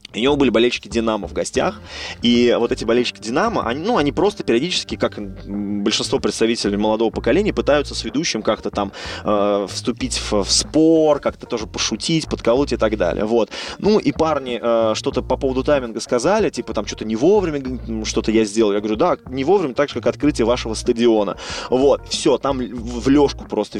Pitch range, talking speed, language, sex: 105-120 Hz, 185 wpm, Russian, male